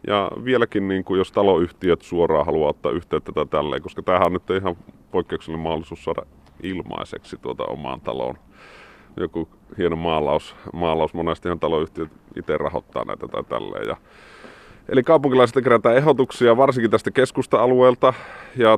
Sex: male